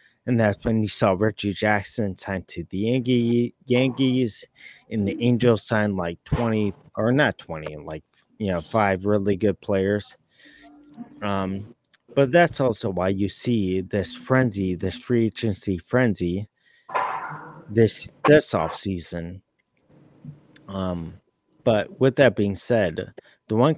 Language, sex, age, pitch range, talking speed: English, male, 30-49, 95-120 Hz, 130 wpm